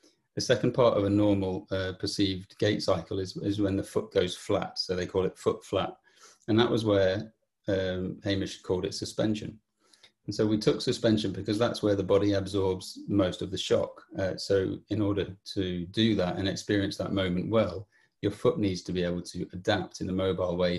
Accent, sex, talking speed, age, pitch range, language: British, male, 205 wpm, 30-49, 95-110 Hz, English